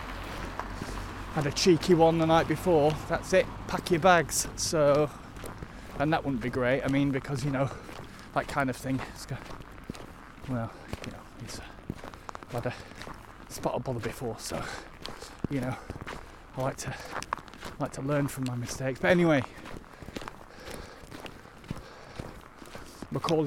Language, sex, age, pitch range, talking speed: English, male, 30-49, 130-155 Hz, 140 wpm